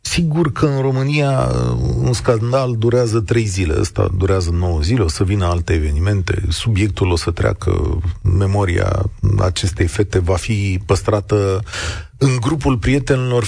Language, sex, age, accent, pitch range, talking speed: Romanian, male, 40-59, native, 85-105 Hz, 140 wpm